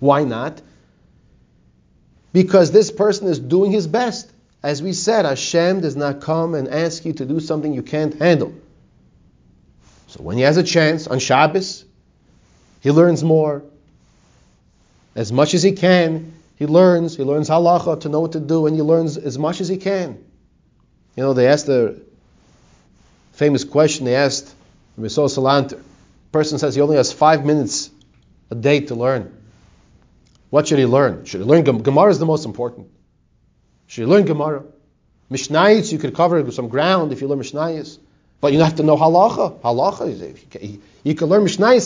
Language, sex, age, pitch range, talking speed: English, male, 30-49, 135-175 Hz, 175 wpm